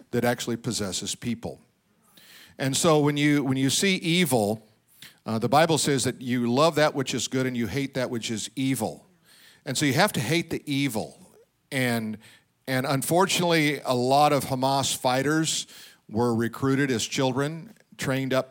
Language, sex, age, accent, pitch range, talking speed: English, male, 50-69, American, 120-145 Hz, 170 wpm